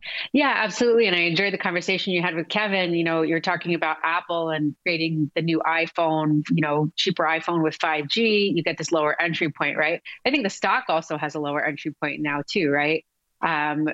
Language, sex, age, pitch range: English, female, 30-49, 155-180 Hz